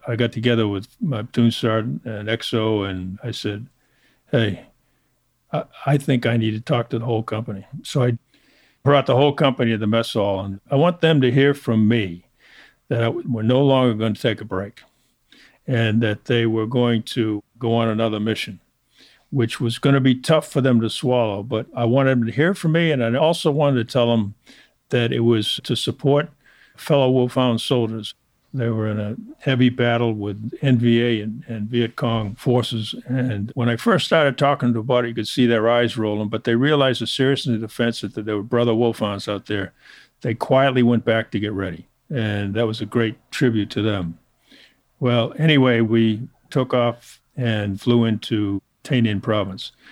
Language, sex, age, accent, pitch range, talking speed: English, male, 50-69, American, 110-125 Hz, 195 wpm